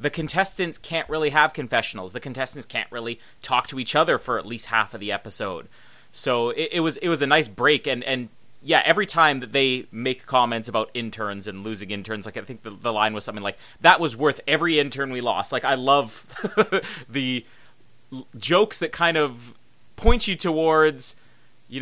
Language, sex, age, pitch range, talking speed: English, male, 30-49, 120-155 Hz, 200 wpm